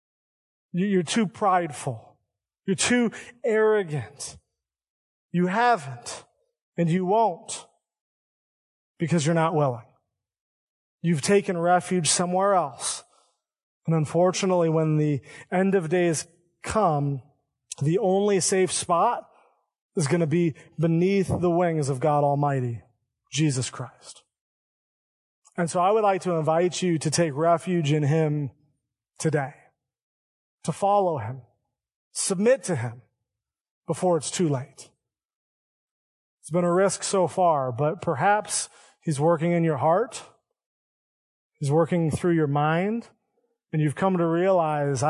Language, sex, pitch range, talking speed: English, male, 145-185 Hz, 120 wpm